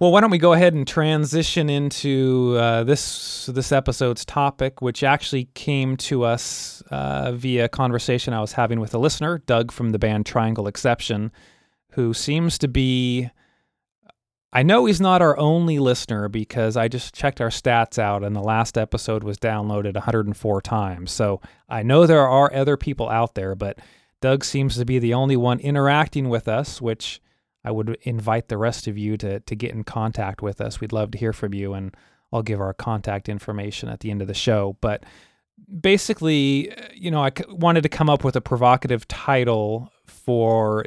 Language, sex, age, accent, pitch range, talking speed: English, male, 30-49, American, 110-135 Hz, 190 wpm